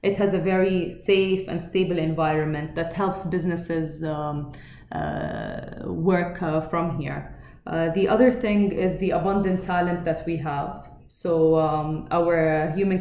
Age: 20-39